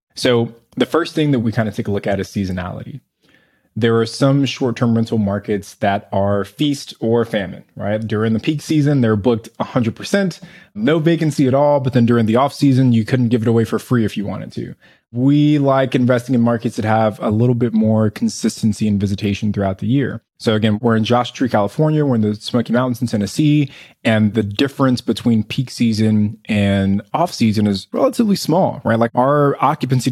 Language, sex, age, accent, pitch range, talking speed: English, male, 20-39, American, 105-130 Hz, 200 wpm